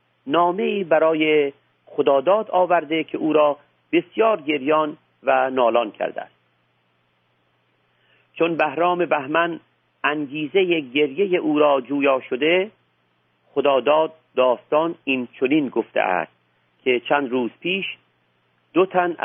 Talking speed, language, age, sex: 105 wpm, Persian, 50-69, male